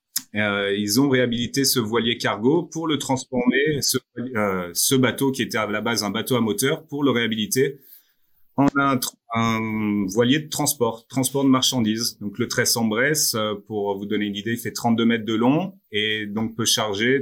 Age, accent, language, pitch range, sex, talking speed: 30-49, French, French, 110-130 Hz, male, 190 wpm